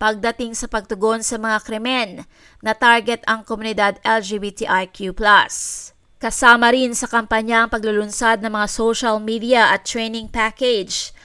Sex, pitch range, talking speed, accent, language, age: female, 210-235 Hz, 130 wpm, Filipino, English, 20-39